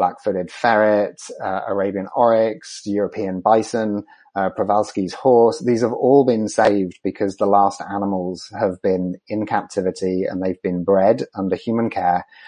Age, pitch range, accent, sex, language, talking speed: 30-49, 95-115 Hz, British, male, English, 145 wpm